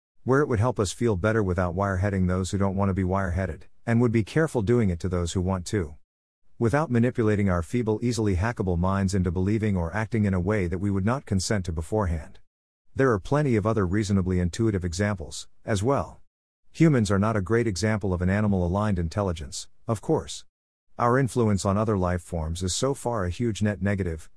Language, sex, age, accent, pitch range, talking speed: English, male, 50-69, American, 90-115 Hz, 205 wpm